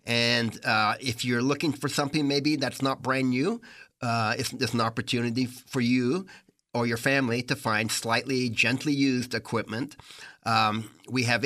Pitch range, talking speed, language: 120-140 Hz, 160 wpm, English